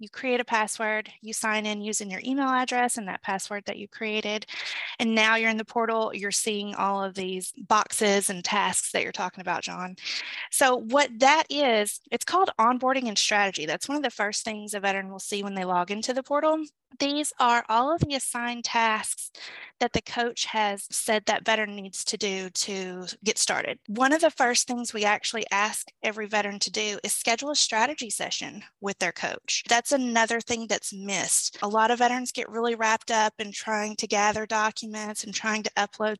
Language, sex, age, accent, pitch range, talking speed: English, female, 20-39, American, 205-245 Hz, 205 wpm